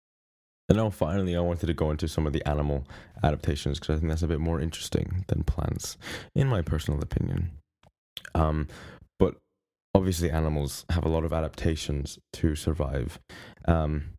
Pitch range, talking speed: 75-95 Hz, 165 wpm